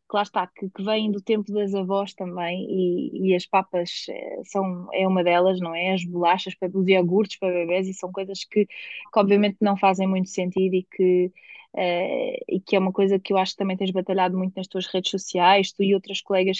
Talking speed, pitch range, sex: 210 wpm, 190-215 Hz, female